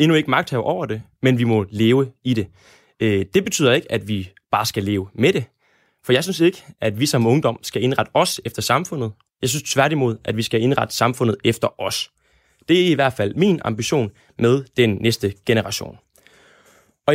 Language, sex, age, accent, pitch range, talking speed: Danish, male, 20-39, native, 110-155 Hz, 195 wpm